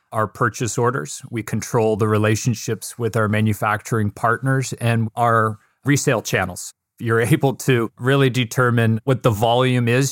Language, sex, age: English, male, 30-49